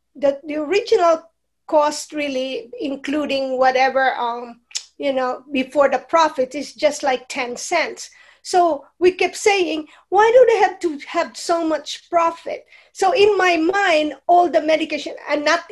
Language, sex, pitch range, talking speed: English, female, 260-320 Hz, 155 wpm